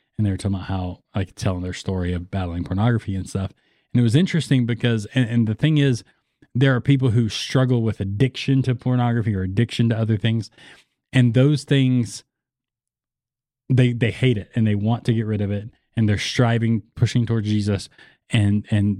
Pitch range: 105-125 Hz